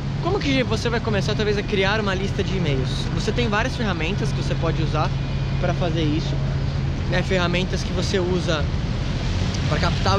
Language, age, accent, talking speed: Portuguese, 20-39, Brazilian, 175 wpm